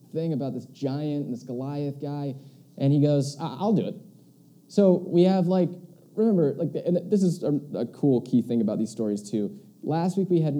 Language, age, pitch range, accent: English, 20-39, 115-155 Hz, American